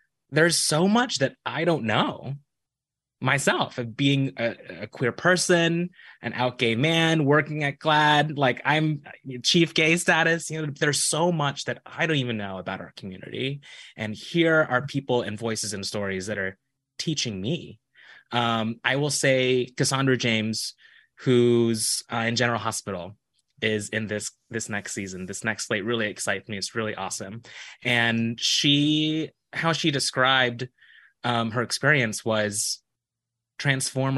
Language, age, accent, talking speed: English, 20-39, American, 155 wpm